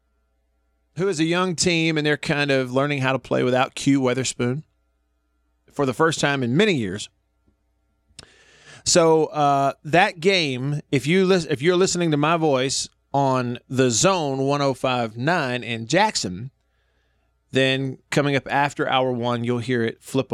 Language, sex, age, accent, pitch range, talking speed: English, male, 40-59, American, 100-160 Hz, 160 wpm